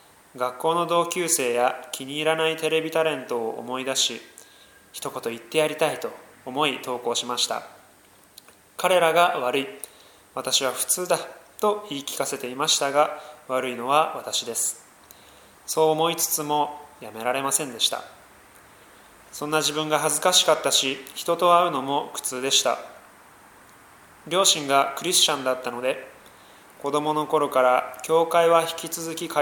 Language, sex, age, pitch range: Japanese, male, 20-39, 135-165 Hz